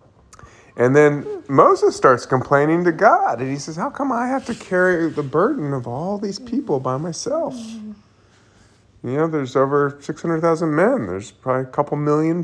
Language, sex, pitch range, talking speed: English, male, 110-155 Hz, 180 wpm